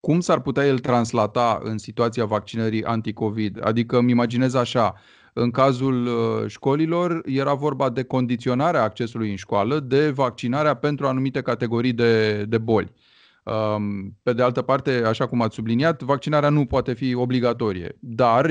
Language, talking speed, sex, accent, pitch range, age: Romanian, 145 wpm, male, native, 115-135 Hz, 30-49